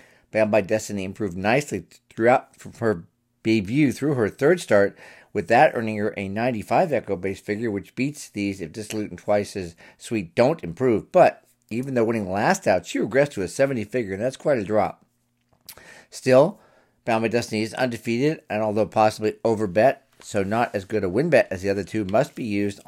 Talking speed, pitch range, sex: 190 wpm, 105-130 Hz, male